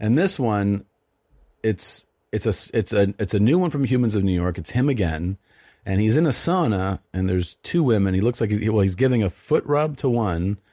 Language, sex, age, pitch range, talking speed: English, male, 40-59, 95-135 Hz, 230 wpm